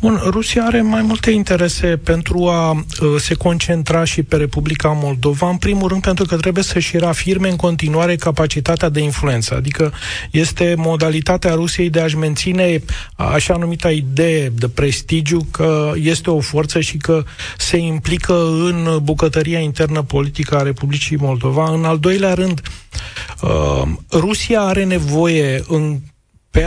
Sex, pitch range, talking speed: male, 150-175 Hz, 145 wpm